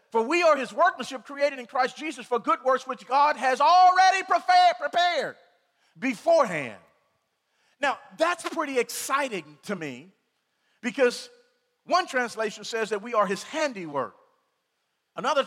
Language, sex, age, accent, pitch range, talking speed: English, male, 40-59, American, 195-270 Hz, 130 wpm